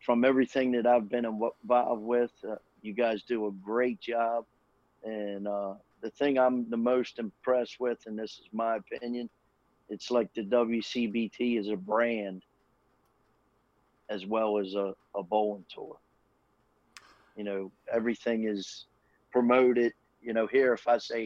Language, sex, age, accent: English, male, 40-59, American